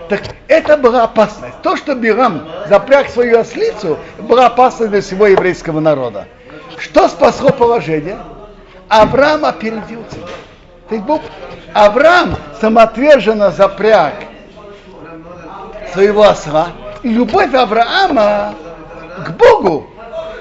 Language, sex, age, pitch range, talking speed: Russian, male, 60-79, 170-255 Hz, 90 wpm